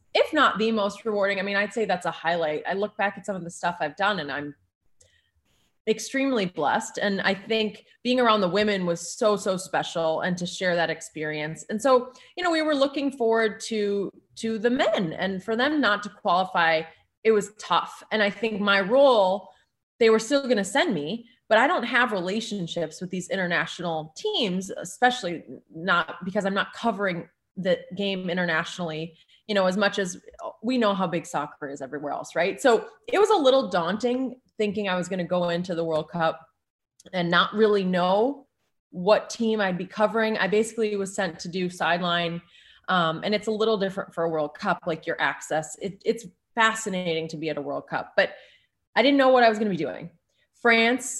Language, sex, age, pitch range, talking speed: English, female, 20-39, 175-225 Hz, 200 wpm